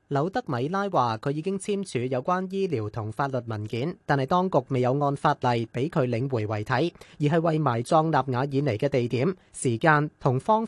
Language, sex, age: Chinese, male, 30-49